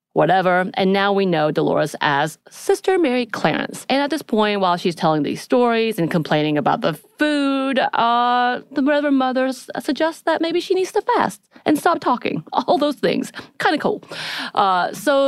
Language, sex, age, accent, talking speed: English, female, 30-49, American, 175 wpm